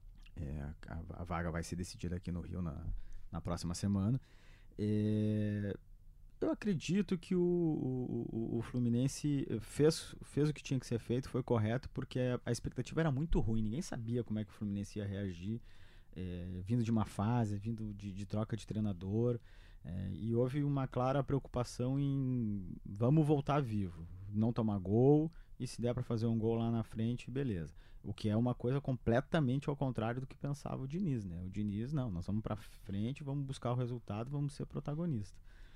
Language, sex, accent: Portuguese, male, Brazilian